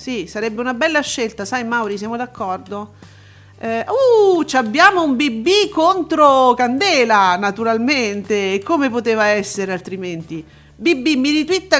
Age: 40-59